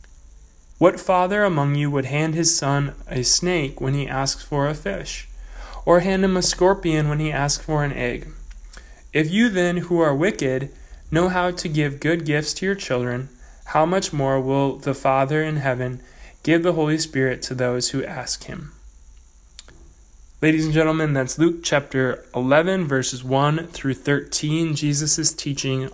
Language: English